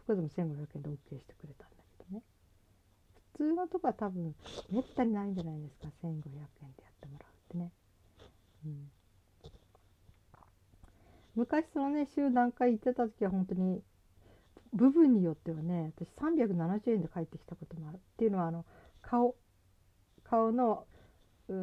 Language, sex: Japanese, female